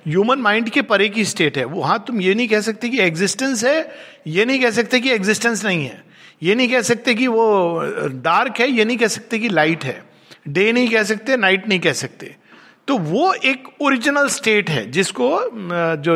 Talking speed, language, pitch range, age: 210 wpm, Hindi, 185-245 Hz, 50-69